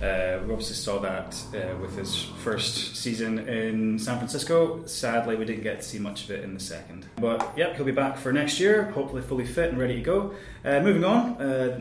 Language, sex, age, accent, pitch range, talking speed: English, male, 20-39, British, 100-130 Hz, 225 wpm